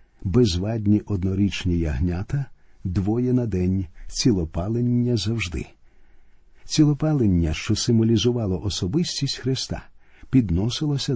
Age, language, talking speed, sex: 50-69, Ukrainian, 75 wpm, male